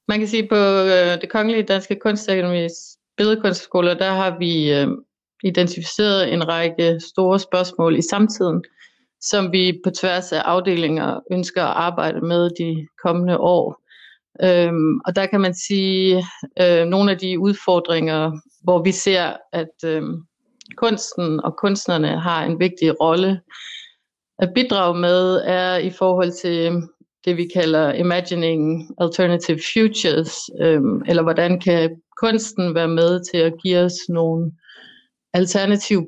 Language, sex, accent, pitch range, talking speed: Danish, female, native, 165-190 Hz, 140 wpm